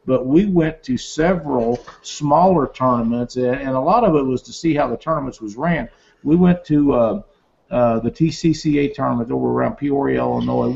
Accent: American